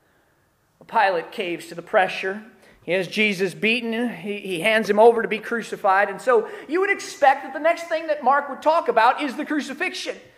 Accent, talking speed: American, 195 wpm